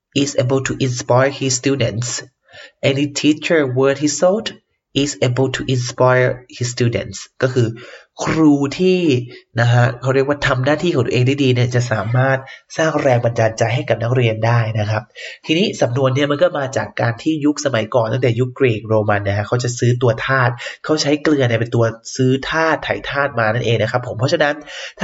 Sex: male